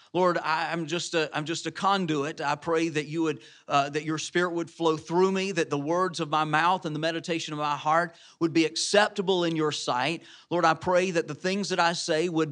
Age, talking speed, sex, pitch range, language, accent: 40-59, 235 wpm, male, 155-190 Hz, English, American